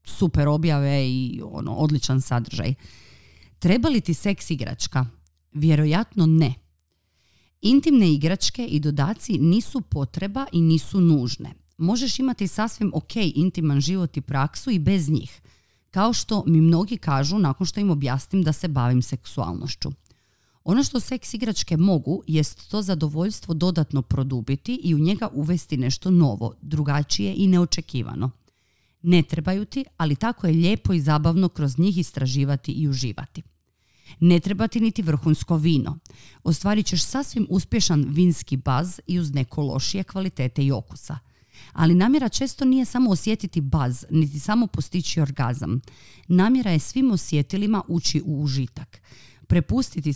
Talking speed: 140 wpm